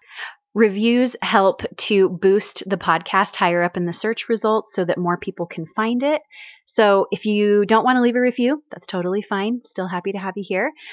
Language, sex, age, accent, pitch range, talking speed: English, female, 30-49, American, 180-240 Hz, 205 wpm